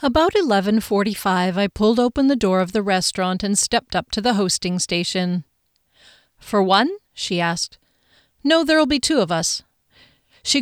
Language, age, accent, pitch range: English, 40-59, American, 185-255 Hz